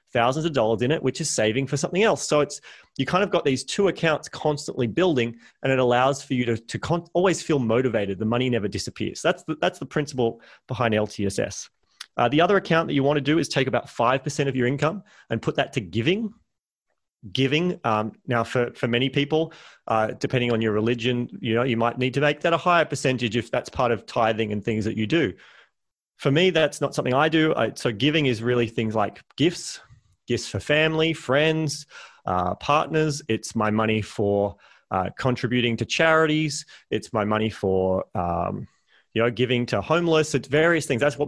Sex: male